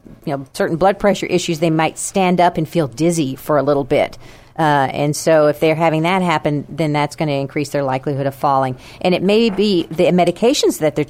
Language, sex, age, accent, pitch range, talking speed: English, female, 50-69, American, 145-185 Hz, 225 wpm